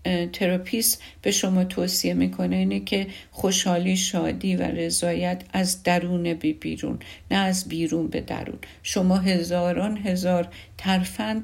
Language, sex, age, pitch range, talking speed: Persian, female, 50-69, 165-195 Hz, 130 wpm